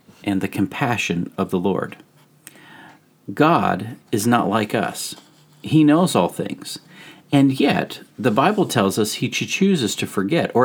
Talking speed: 145 wpm